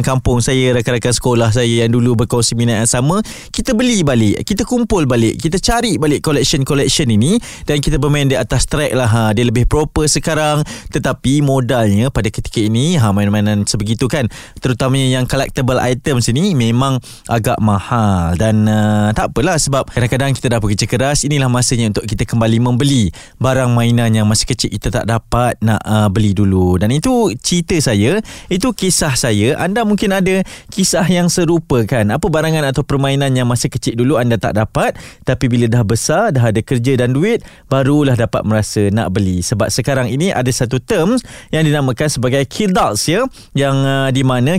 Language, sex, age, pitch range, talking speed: Malay, male, 20-39, 115-150 Hz, 175 wpm